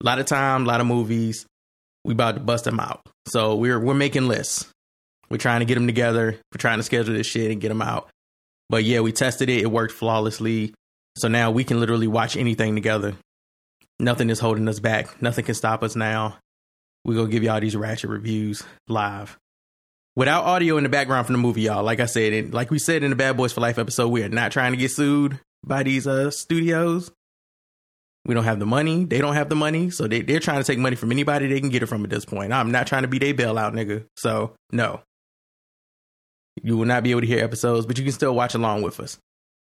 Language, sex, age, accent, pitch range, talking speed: English, male, 20-39, American, 110-135 Hz, 240 wpm